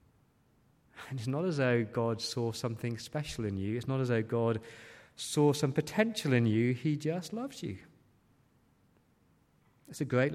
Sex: male